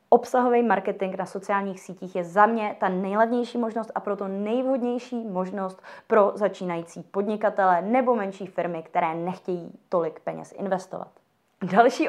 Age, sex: 20-39, female